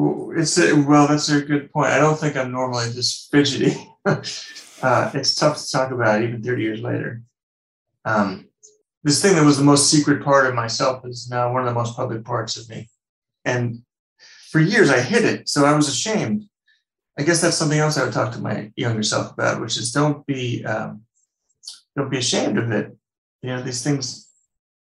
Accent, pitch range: American, 120-150 Hz